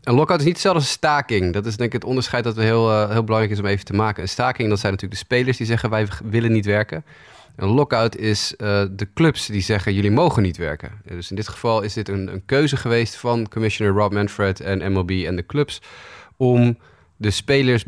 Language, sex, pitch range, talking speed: Dutch, male, 95-115 Hz, 245 wpm